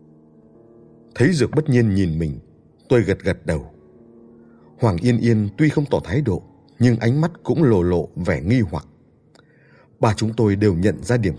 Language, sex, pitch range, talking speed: Vietnamese, male, 85-125 Hz, 180 wpm